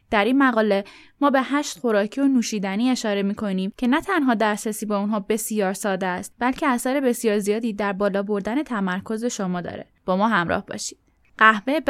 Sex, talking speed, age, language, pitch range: female, 180 wpm, 10-29, Persian, 200-250 Hz